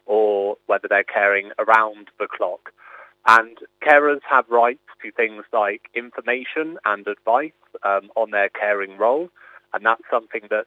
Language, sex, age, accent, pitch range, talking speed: English, male, 30-49, British, 105-120 Hz, 145 wpm